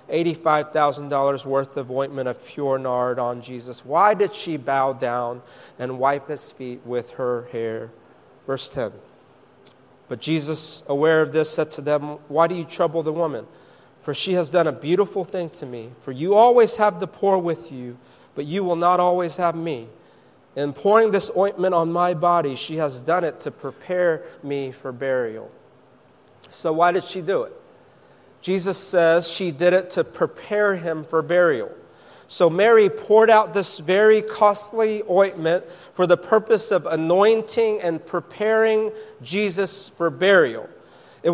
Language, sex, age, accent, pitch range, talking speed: English, male, 40-59, American, 150-205 Hz, 160 wpm